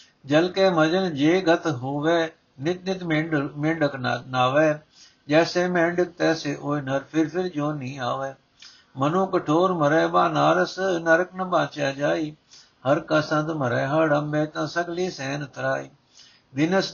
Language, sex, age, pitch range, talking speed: Punjabi, male, 60-79, 140-165 Hz, 140 wpm